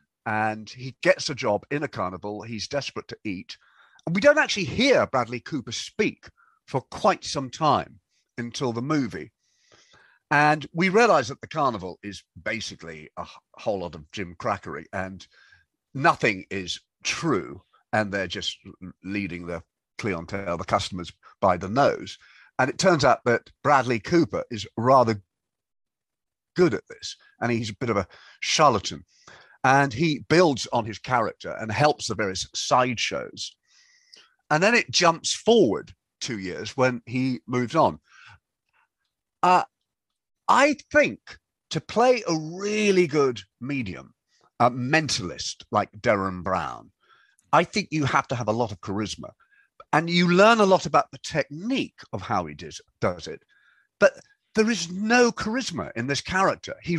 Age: 50-69